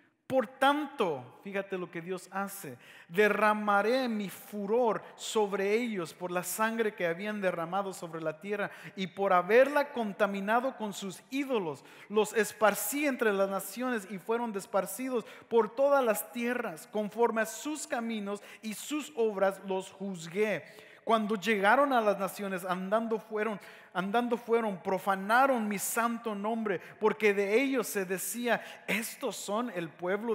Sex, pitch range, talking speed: male, 190-245 Hz, 140 wpm